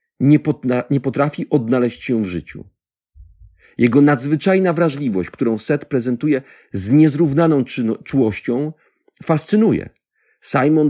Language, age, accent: Polish, 50-69, native